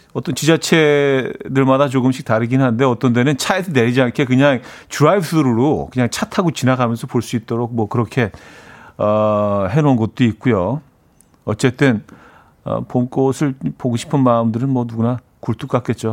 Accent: native